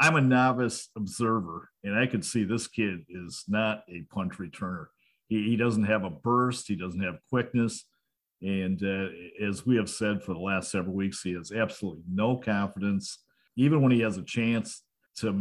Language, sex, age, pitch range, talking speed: English, male, 50-69, 100-125 Hz, 185 wpm